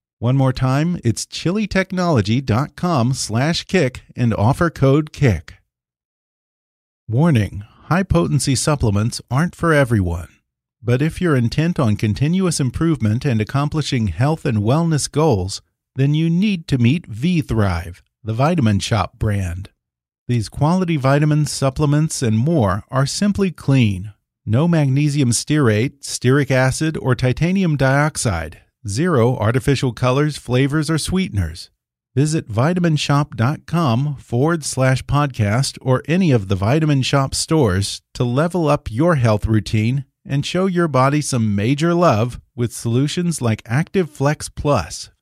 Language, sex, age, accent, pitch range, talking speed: English, male, 40-59, American, 110-155 Hz, 125 wpm